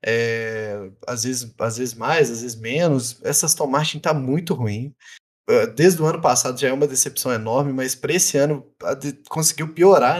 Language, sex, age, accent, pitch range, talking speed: Portuguese, male, 20-39, Brazilian, 130-175 Hz, 175 wpm